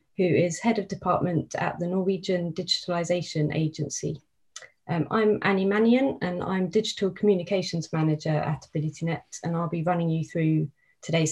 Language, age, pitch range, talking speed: English, 30-49, 160-195 Hz, 150 wpm